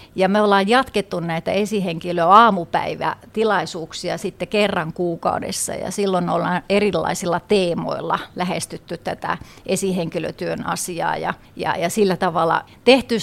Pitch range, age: 175-210 Hz, 30-49